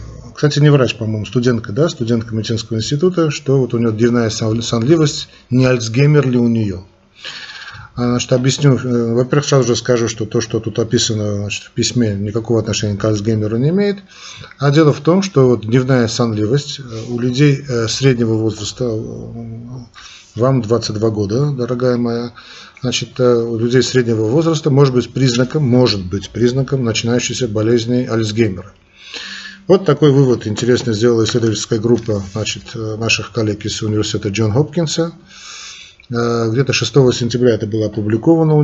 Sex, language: male, Russian